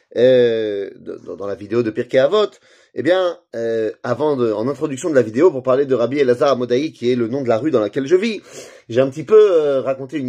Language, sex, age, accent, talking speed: French, male, 30-49, French, 245 wpm